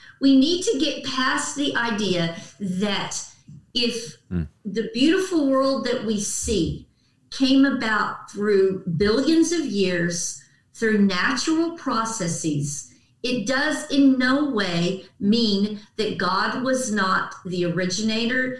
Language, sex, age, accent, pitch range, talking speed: English, female, 40-59, American, 195-255 Hz, 115 wpm